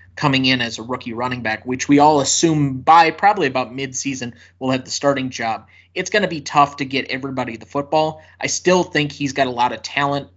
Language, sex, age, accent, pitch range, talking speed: English, male, 20-39, American, 120-145 Hz, 225 wpm